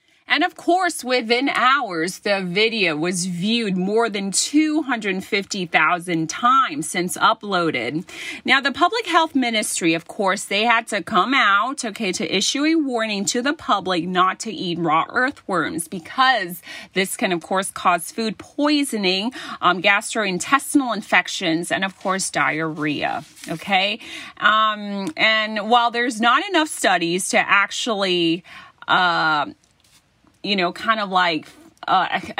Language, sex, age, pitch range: Thai, female, 30-49, 185-300 Hz